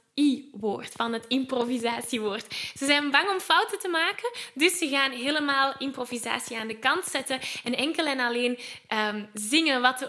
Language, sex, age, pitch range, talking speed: Dutch, female, 10-29, 235-315 Hz, 165 wpm